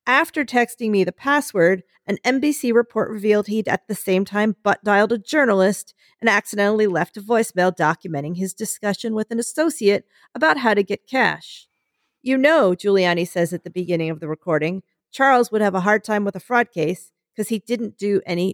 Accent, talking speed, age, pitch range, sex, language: American, 190 wpm, 40-59, 195-250 Hz, female, English